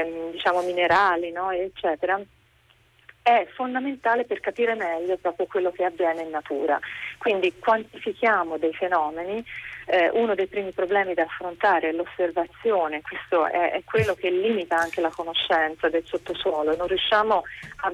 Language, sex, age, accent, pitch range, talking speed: Italian, female, 30-49, native, 165-190 Hz, 135 wpm